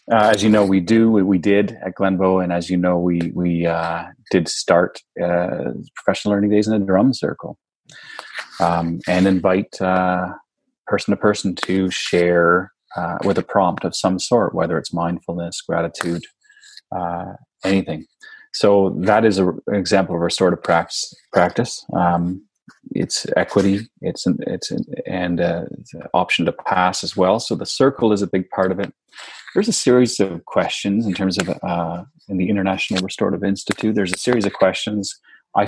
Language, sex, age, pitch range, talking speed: English, male, 30-49, 90-105 Hz, 180 wpm